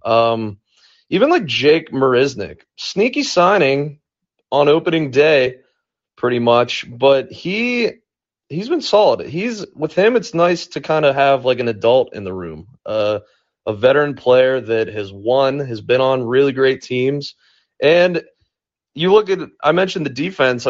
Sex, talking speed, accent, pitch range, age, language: male, 155 wpm, American, 115-150 Hz, 30-49, English